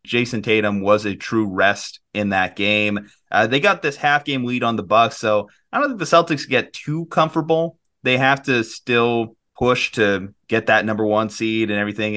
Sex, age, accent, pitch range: male, 30-49, American, 105-140 Hz